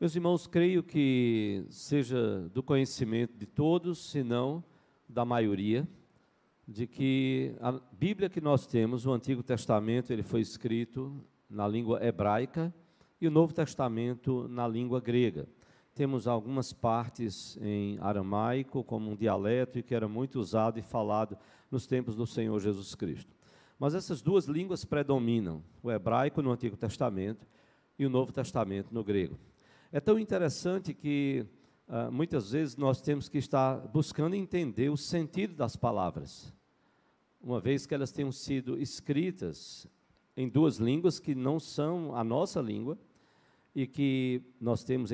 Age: 50-69